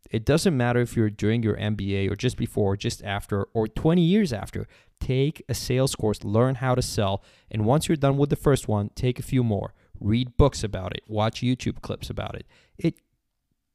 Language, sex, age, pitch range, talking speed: English, male, 20-39, 105-125 Hz, 205 wpm